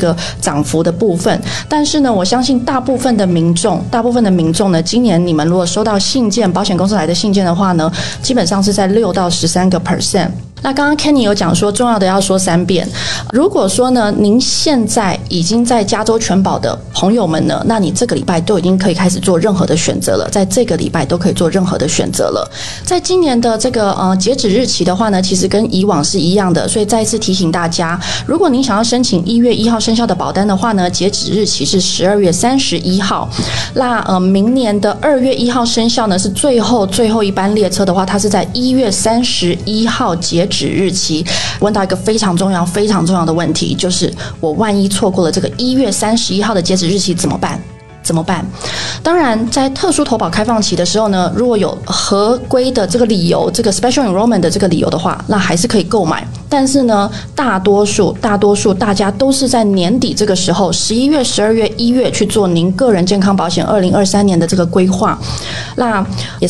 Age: 20-39